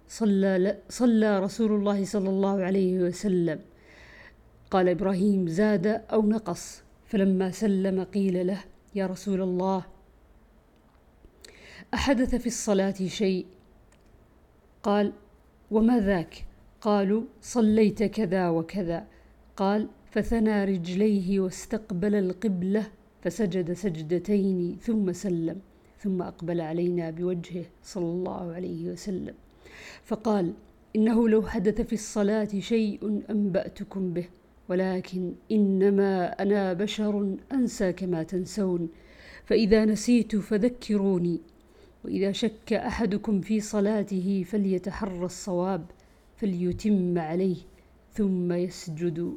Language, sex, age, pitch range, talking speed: Arabic, female, 50-69, 180-215 Hz, 90 wpm